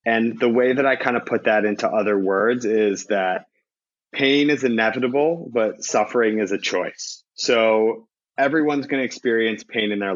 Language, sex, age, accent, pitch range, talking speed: English, male, 30-49, American, 105-135 Hz, 175 wpm